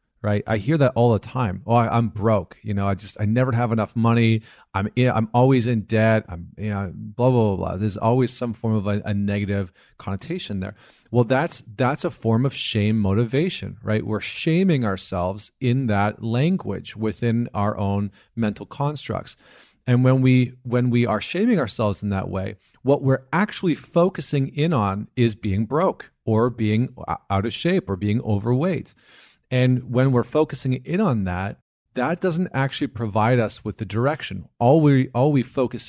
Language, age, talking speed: English, 40-59, 185 wpm